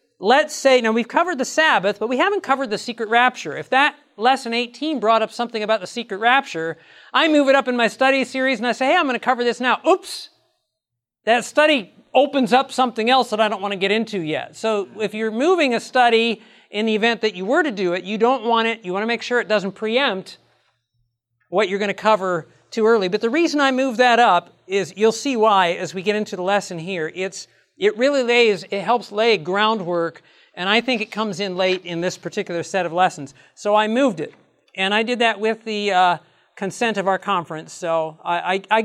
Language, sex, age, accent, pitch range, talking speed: English, male, 40-59, American, 190-240 Hz, 230 wpm